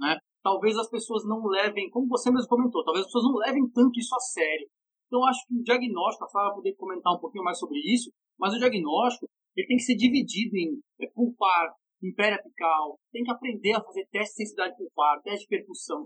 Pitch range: 180-245 Hz